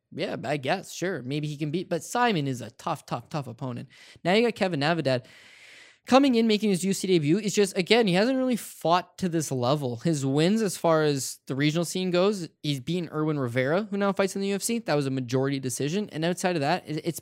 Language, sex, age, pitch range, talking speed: English, male, 10-29, 140-190 Hz, 230 wpm